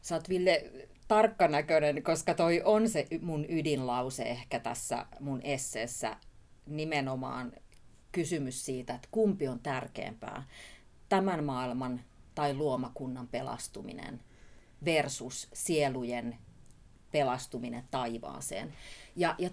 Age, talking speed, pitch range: 30-49, 100 wpm, 125-180 Hz